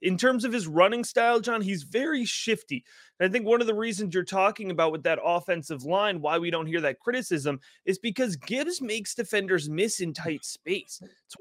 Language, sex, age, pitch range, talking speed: English, male, 30-49, 165-220 Hz, 205 wpm